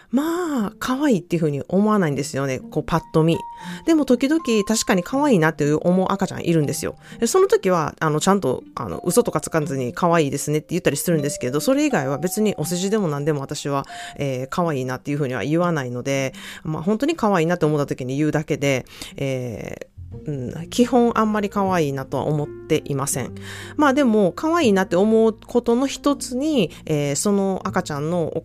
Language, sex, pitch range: Japanese, female, 145-225 Hz